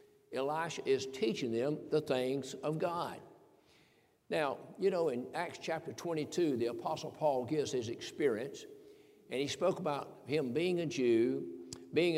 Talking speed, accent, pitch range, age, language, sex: 150 wpm, American, 145-195 Hz, 60-79, English, male